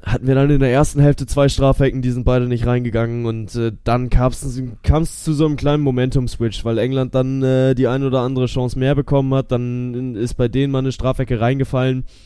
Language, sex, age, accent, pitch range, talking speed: German, male, 10-29, German, 115-135 Hz, 215 wpm